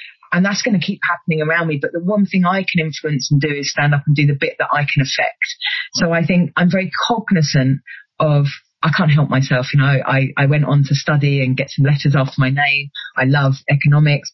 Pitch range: 145-175 Hz